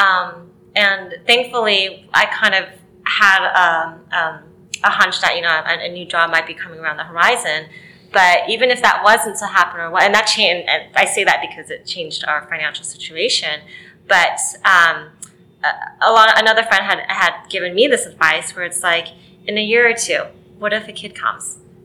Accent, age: American, 20-39